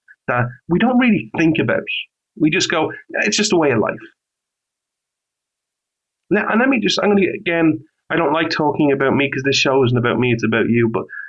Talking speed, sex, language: 205 wpm, male, English